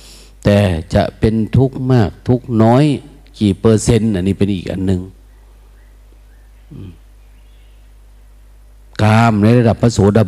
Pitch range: 95-115 Hz